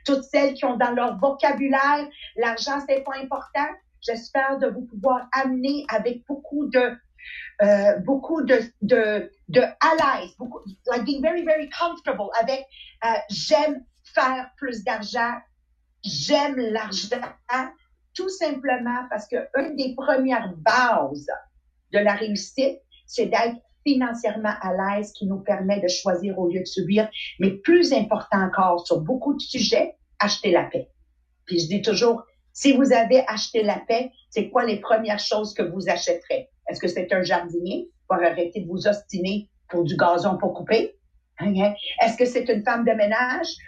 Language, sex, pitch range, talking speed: English, female, 205-275 Hz, 160 wpm